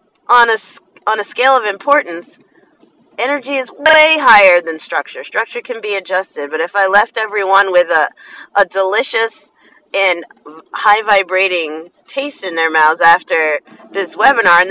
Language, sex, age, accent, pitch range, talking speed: English, female, 30-49, American, 195-275 Hz, 145 wpm